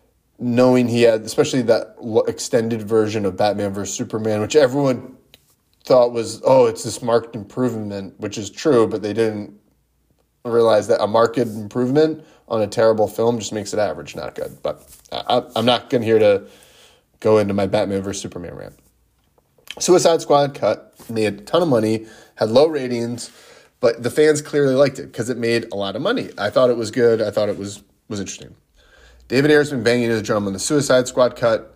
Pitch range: 105-125 Hz